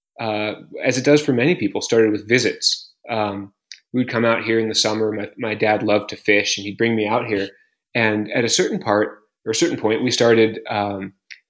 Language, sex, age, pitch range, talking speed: English, male, 30-49, 105-120 Hz, 220 wpm